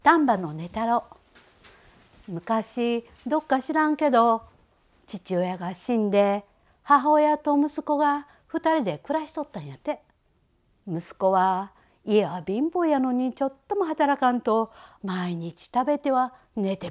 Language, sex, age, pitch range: Japanese, female, 50-69, 190-305 Hz